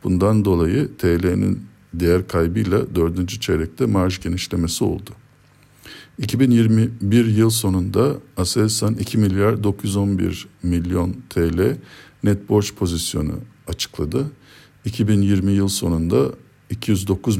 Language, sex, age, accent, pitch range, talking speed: Turkish, male, 50-69, native, 95-120 Hz, 95 wpm